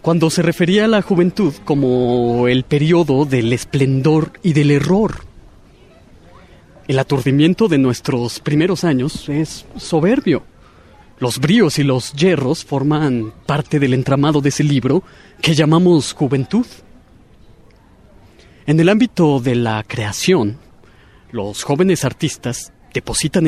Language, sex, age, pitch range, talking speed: Spanish, male, 30-49, 130-175 Hz, 120 wpm